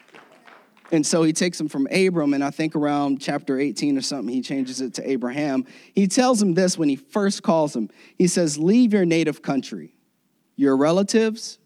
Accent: American